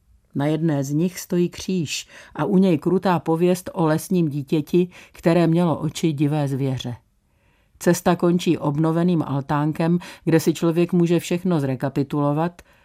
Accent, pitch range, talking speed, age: native, 145-185 Hz, 135 wpm, 50-69